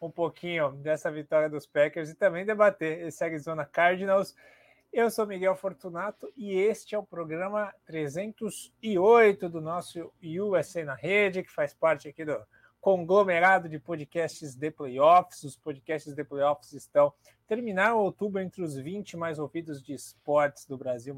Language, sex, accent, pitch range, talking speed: English, male, Brazilian, 145-185 Hz, 155 wpm